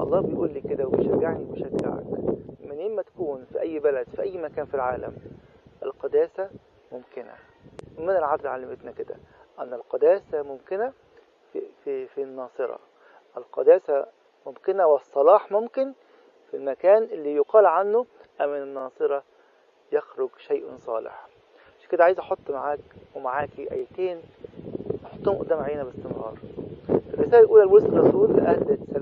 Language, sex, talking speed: English, male, 120 wpm